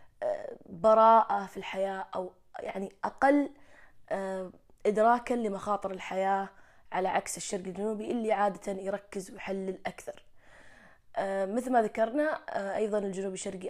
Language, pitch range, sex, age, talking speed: Arabic, 195-225 Hz, female, 20-39, 105 wpm